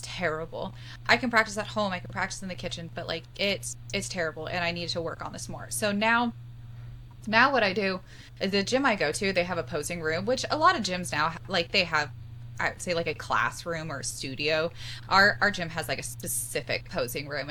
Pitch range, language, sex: 120-205 Hz, English, female